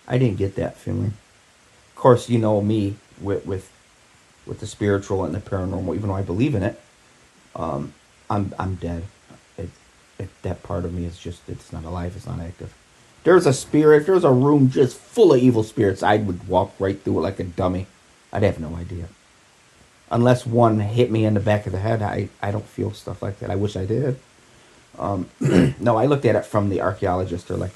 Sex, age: male, 30-49